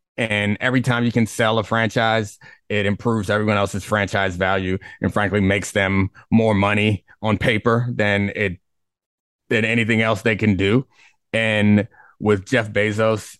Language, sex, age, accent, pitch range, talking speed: English, male, 30-49, American, 100-115 Hz, 150 wpm